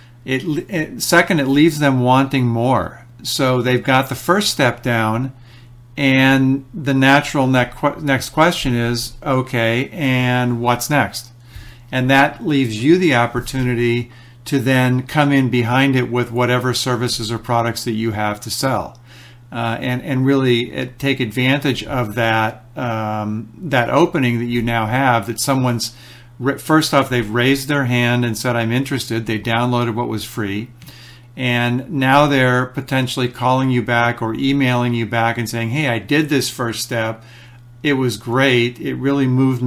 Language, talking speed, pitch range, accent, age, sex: English, 155 wpm, 120-135 Hz, American, 50-69, male